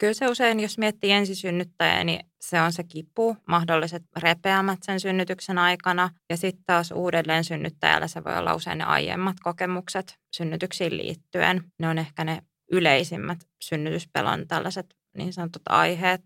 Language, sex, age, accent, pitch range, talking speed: Finnish, female, 20-39, native, 165-185 Hz, 150 wpm